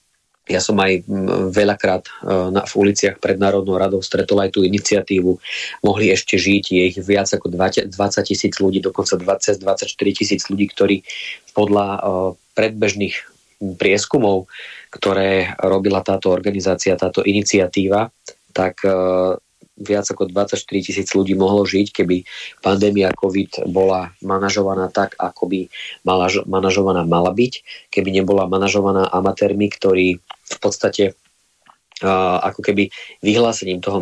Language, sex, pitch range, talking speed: Slovak, male, 95-100 Hz, 120 wpm